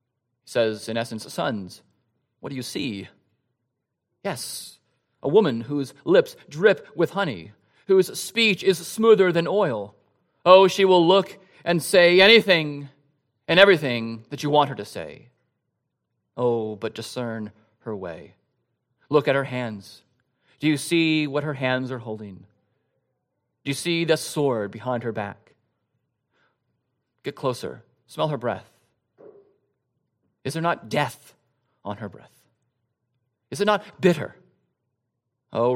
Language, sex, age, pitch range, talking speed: English, male, 30-49, 115-165 Hz, 135 wpm